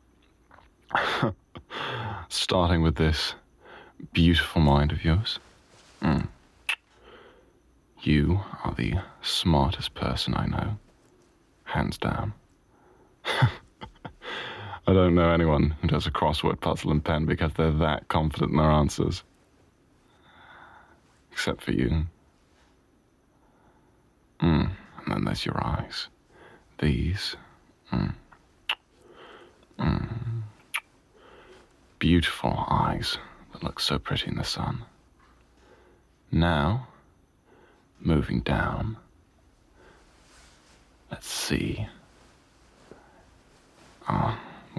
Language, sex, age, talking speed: English, male, 30-49, 85 wpm